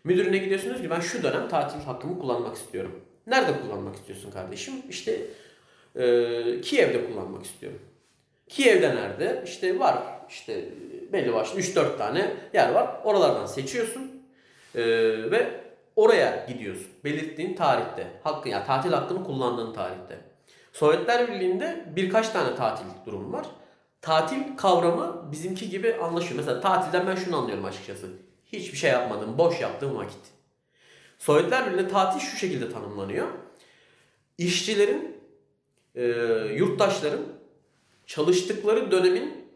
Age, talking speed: 40-59, 120 wpm